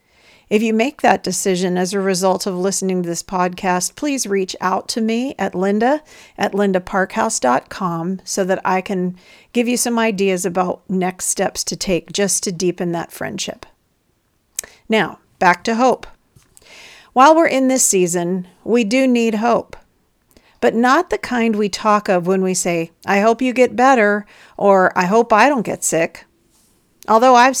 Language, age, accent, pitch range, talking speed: English, 50-69, American, 185-235 Hz, 165 wpm